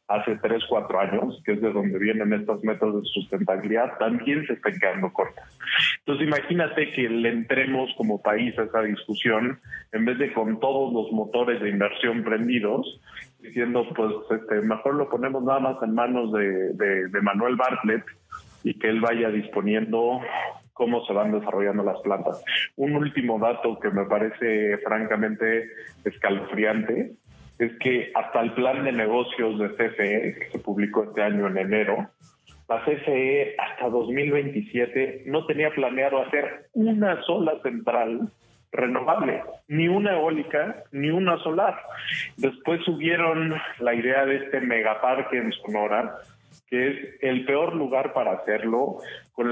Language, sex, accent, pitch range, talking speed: Spanish, male, Mexican, 110-140 Hz, 150 wpm